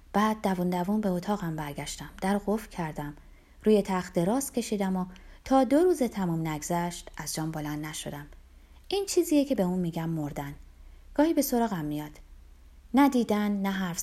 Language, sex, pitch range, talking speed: Persian, female, 150-225 Hz, 165 wpm